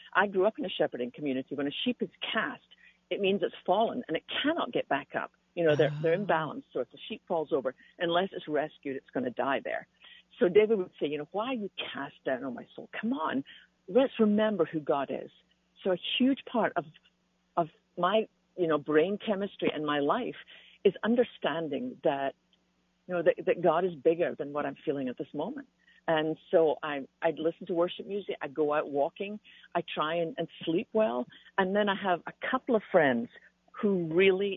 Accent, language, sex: American, English, female